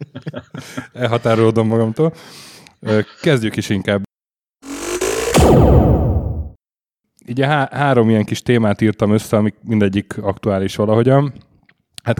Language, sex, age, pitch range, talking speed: Hungarian, male, 30-49, 95-115 Hz, 85 wpm